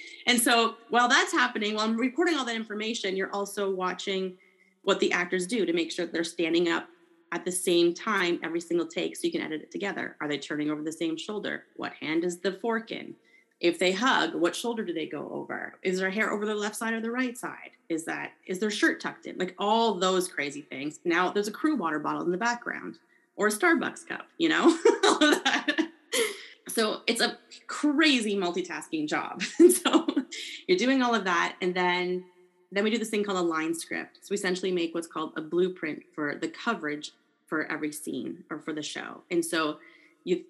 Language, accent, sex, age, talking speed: English, American, female, 30-49, 215 wpm